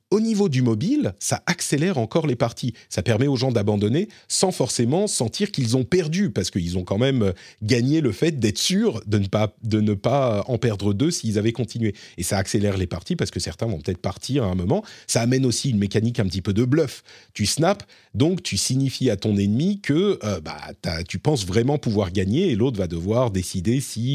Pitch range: 100-145 Hz